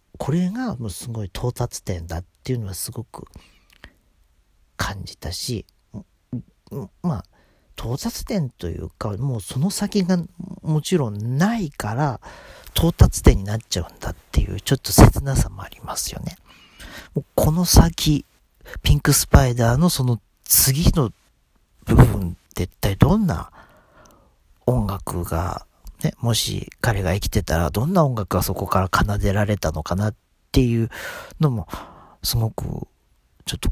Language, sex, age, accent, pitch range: Japanese, male, 50-69, native, 90-140 Hz